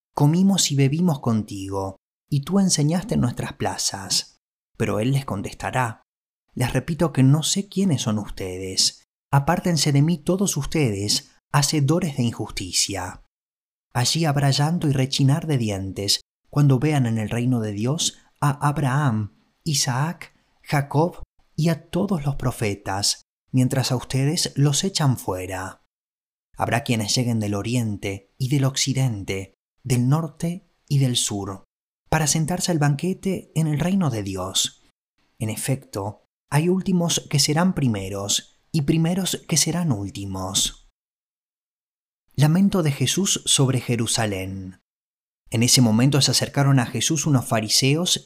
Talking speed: 130 wpm